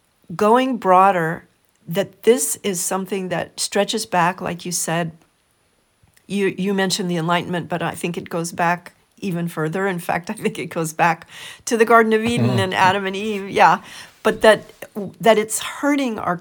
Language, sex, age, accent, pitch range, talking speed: English, female, 40-59, American, 170-215 Hz, 175 wpm